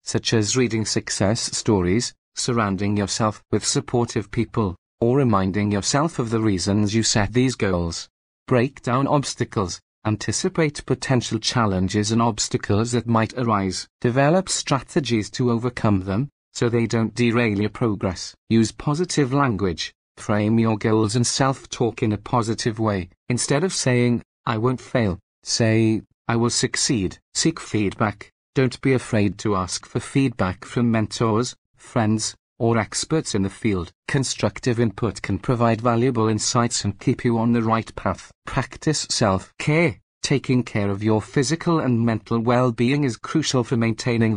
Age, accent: 40-59, British